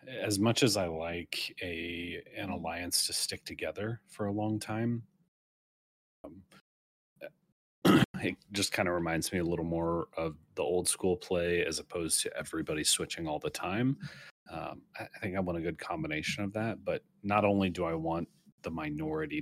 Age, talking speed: 30-49, 175 wpm